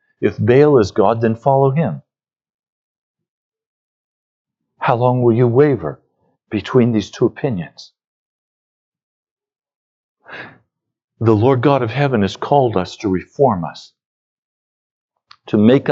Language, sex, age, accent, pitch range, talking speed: English, male, 60-79, American, 125-180 Hz, 110 wpm